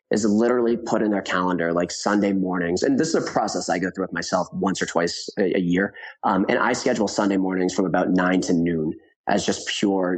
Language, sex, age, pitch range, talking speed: English, male, 30-49, 95-115 Hz, 225 wpm